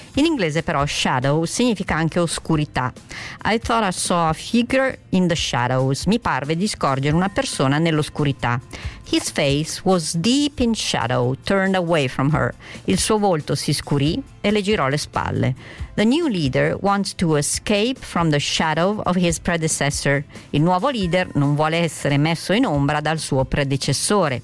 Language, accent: Italian, native